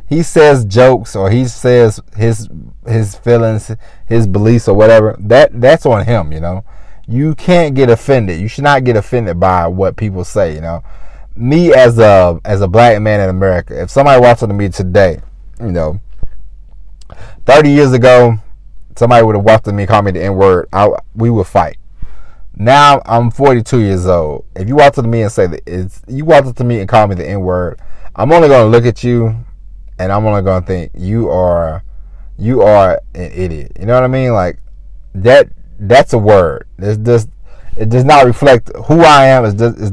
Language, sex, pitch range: English, male, 90-120 Hz